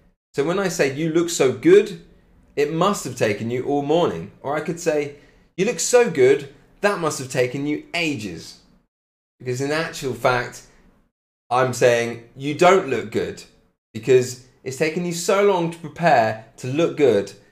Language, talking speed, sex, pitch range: English, 170 wpm, male, 125-175 Hz